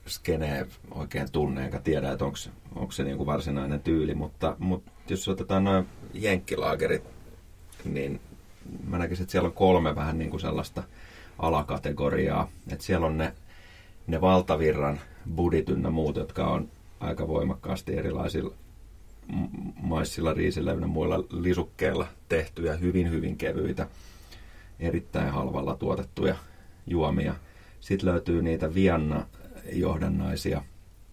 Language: Finnish